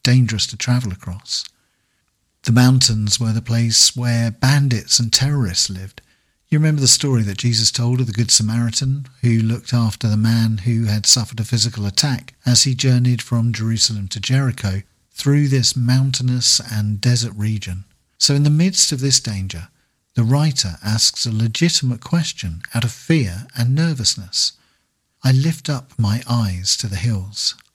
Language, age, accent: English, 50-69, British